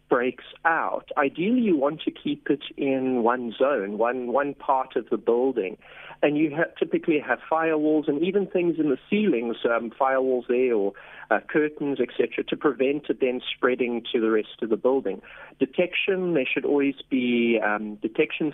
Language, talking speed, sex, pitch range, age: English, 175 wpm, male, 120-150 Hz, 40-59